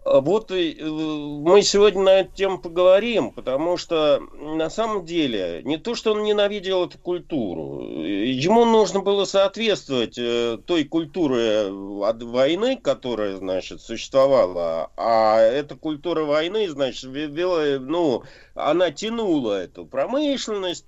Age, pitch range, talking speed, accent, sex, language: 50-69, 135-205 Hz, 115 wpm, native, male, Russian